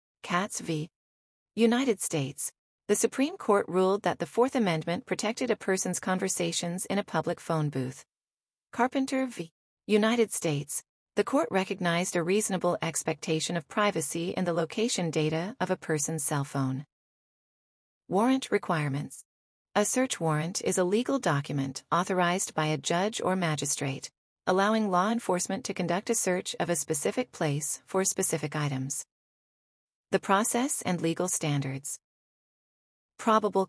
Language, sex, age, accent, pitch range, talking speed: English, female, 40-59, American, 155-205 Hz, 135 wpm